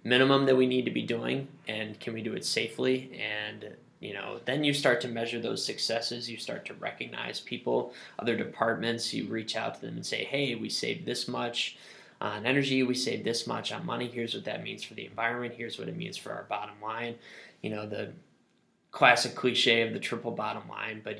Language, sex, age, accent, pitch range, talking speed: English, male, 10-29, American, 110-130 Hz, 215 wpm